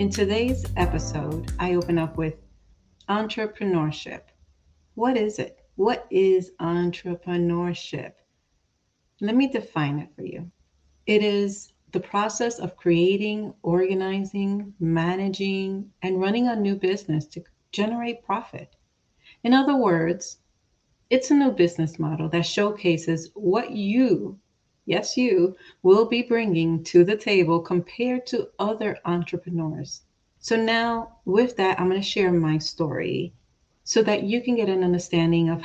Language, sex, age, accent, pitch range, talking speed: English, female, 40-59, American, 170-215 Hz, 130 wpm